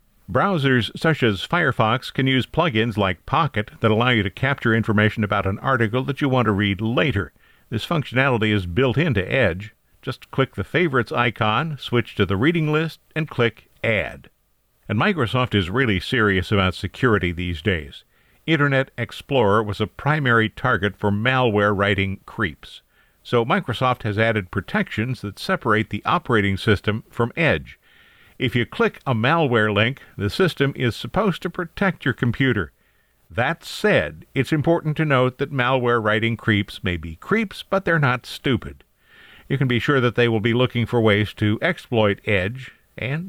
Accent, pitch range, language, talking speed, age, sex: American, 105-140 Hz, English, 165 wpm, 50-69, male